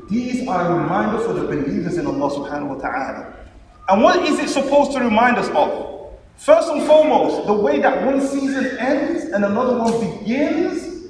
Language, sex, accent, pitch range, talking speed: English, male, Nigerian, 220-310 Hz, 185 wpm